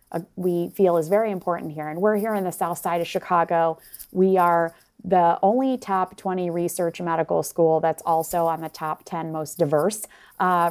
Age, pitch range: 20-39, 165-190 Hz